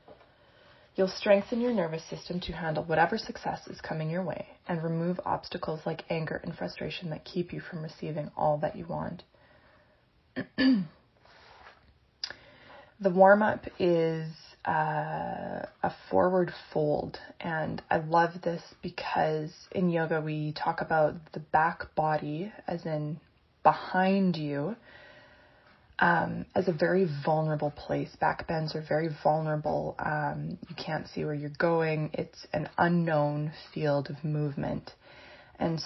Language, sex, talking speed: English, female, 130 wpm